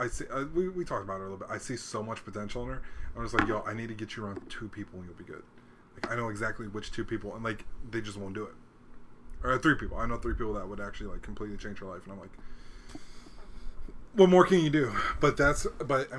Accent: American